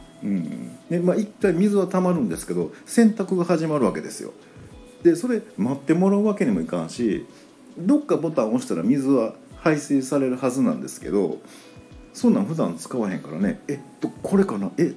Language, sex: Japanese, male